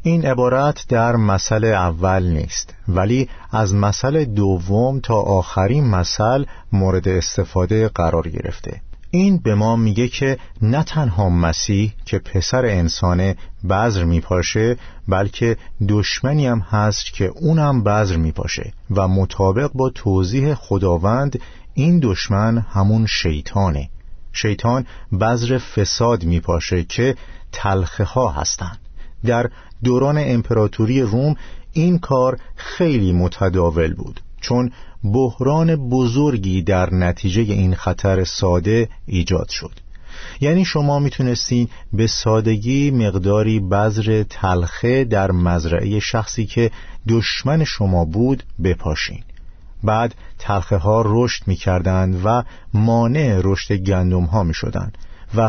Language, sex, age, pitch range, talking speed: Persian, male, 50-69, 95-120 Hz, 110 wpm